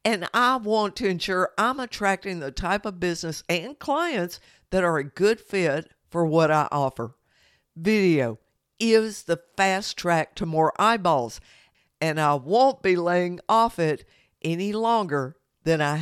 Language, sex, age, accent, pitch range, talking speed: English, female, 60-79, American, 155-215 Hz, 155 wpm